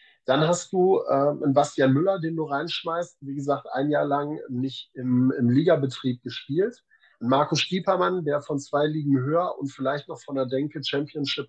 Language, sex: German, male